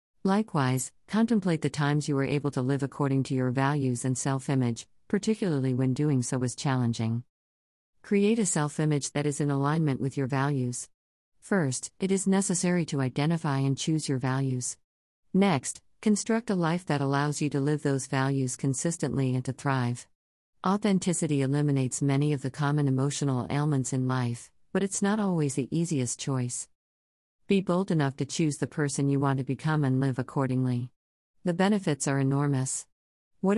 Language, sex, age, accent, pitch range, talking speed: English, female, 50-69, American, 125-160 Hz, 165 wpm